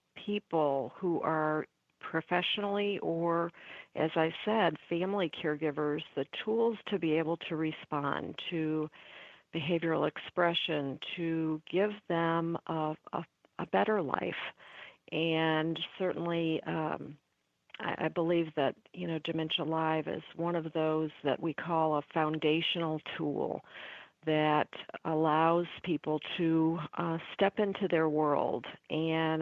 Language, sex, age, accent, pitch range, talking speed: English, female, 50-69, American, 155-175 Hz, 120 wpm